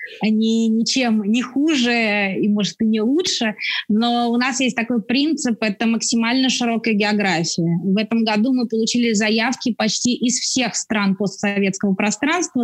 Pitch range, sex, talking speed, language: 210-250 Hz, female, 145 wpm, English